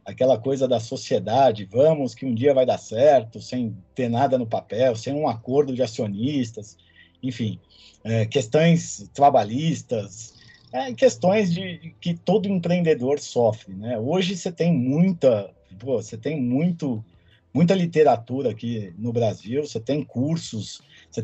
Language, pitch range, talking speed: Portuguese, 115-160 Hz, 145 wpm